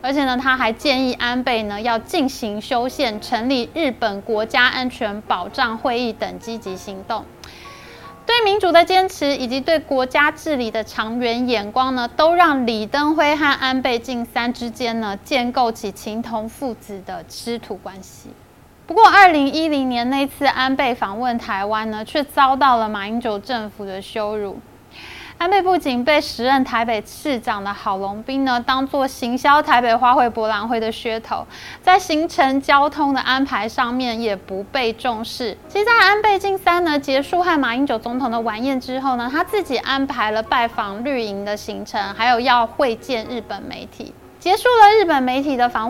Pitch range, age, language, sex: 220-280 Hz, 20-39, Chinese, female